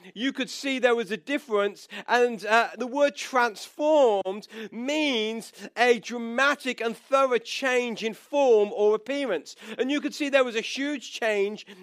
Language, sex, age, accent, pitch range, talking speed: English, male, 40-59, British, 210-270 Hz, 155 wpm